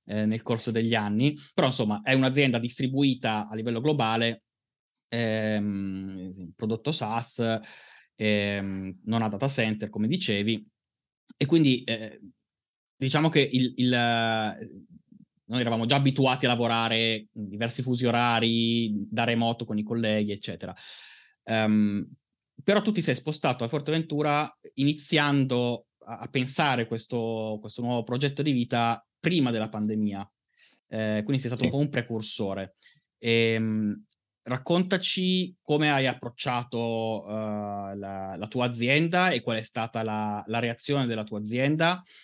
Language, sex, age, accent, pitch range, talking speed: Italian, male, 20-39, native, 110-130 Hz, 130 wpm